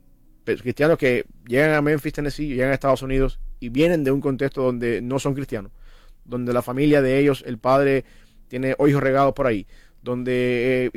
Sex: male